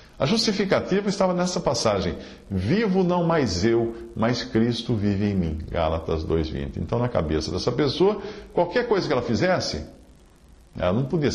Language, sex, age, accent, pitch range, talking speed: Portuguese, male, 50-69, Brazilian, 90-135 Hz, 155 wpm